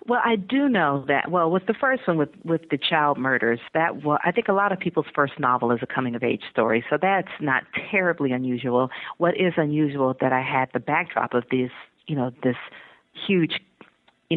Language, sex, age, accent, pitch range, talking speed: English, female, 40-59, American, 130-160 Hz, 215 wpm